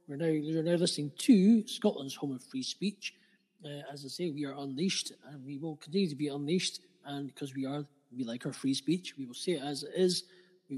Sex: male